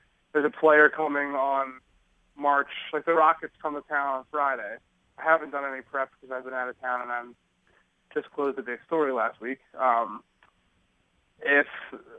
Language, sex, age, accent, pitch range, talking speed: English, male, 30-49, American, 130-150 Hz, 175 wpm